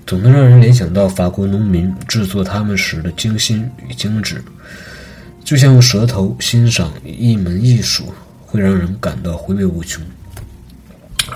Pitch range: 90-110 Hz